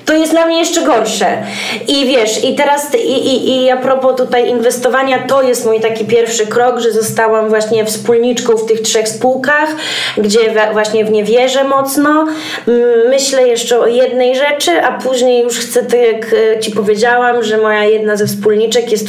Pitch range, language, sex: 220-255 Hz, Polish, female